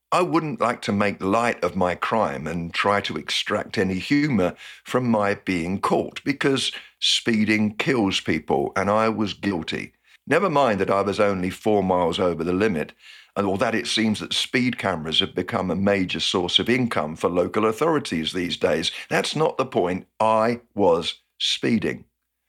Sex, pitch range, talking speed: male, 95-120 Hz, 170 wpm